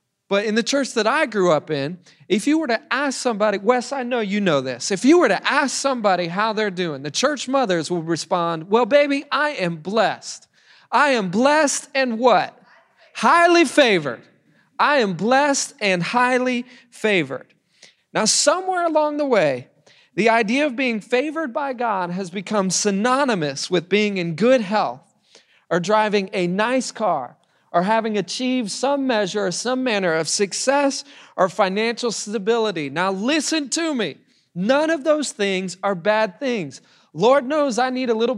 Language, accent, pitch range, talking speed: English, American, 200-275 Hz, 170 wpm